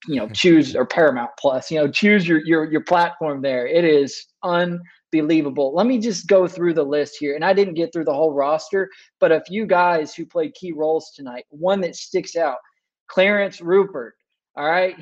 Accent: American